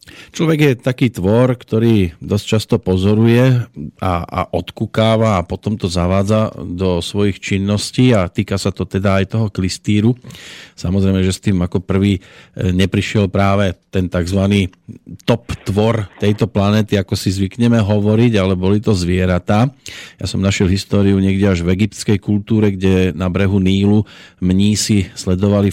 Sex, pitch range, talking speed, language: male, 95-110 Hz, 150 wpm, Slovak